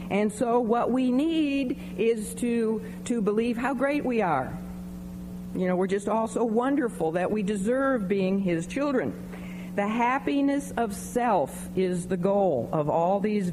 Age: 50-69